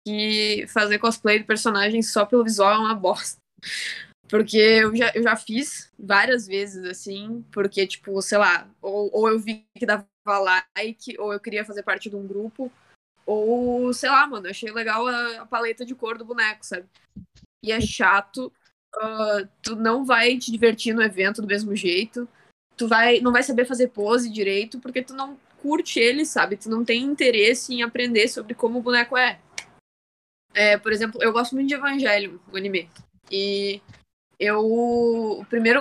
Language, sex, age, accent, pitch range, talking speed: Portuguese, female, 10-29, Brazilian, 205-245 Hz, 175 wpm